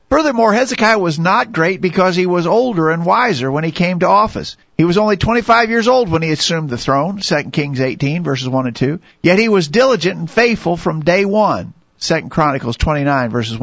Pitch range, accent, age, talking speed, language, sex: 150-200 Hz, American, 50-69, 205 wpm, English, male